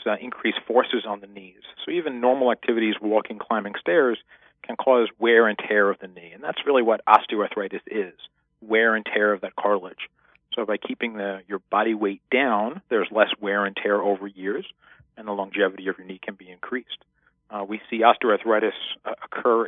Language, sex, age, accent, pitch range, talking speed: English, male, 40-59, American, 95-110 Hz, 190 wpm